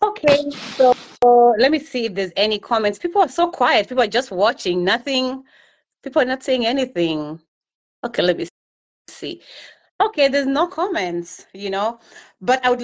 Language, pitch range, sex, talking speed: English, 180-245 Hz, female, 175 wpm